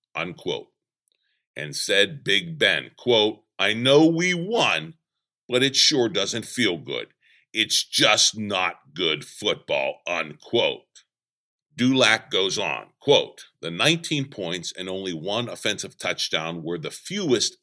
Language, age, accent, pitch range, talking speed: English, 50-69, American, 100-150 Hz, 125 wpm